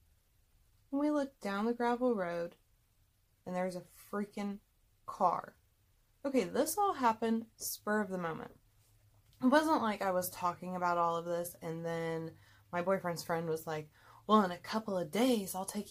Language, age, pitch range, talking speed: English, 20-39, 165-230 Hz, 170 wpm